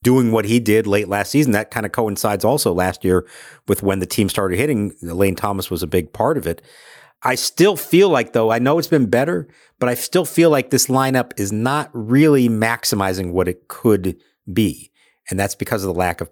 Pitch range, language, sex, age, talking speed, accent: 95-125 Hz, English, male, 50-69, 220 wpm, American